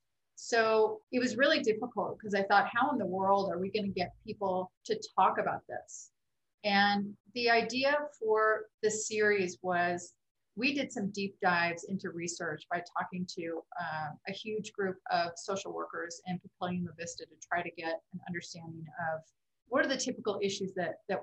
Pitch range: 180-220 Hz